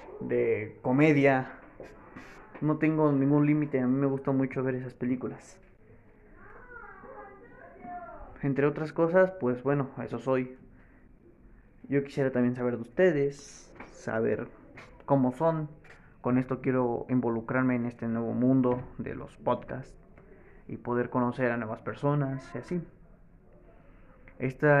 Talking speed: 125 wpm